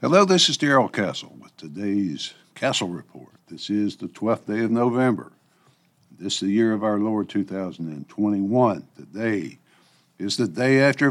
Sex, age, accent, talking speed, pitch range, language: male, 60-79, American, 155 wpm, 100-135 Hz, English